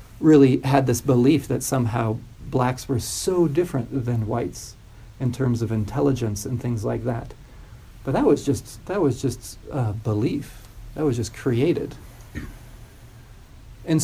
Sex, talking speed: male, 145 wpm